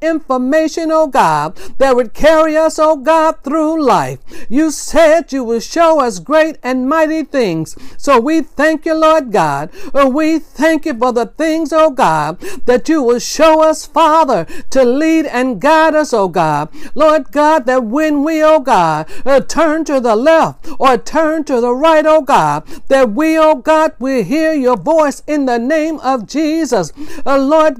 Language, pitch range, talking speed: English, 260-315 Hz, 190 wpm